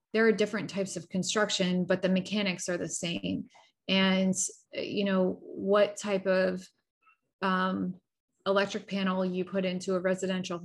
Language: English